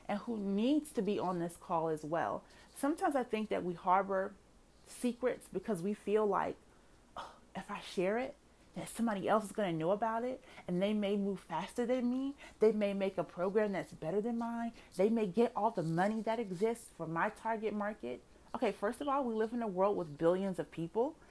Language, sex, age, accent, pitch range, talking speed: English, female, 30-49, American, 175-220 Hz, 210 wpm